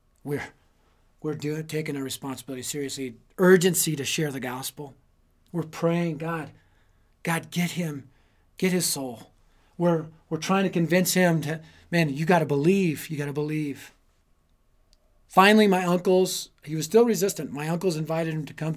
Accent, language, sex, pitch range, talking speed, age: American, English, male, 115-160 Hz, 160 wpm, 40-59